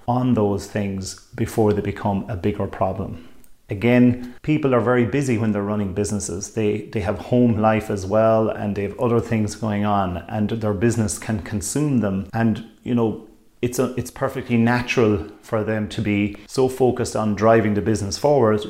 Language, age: English, 30-49